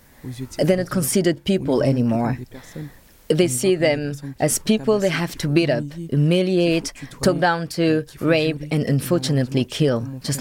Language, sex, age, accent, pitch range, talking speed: French, female, 20-39, French, 140-185 Hz, 140 wpm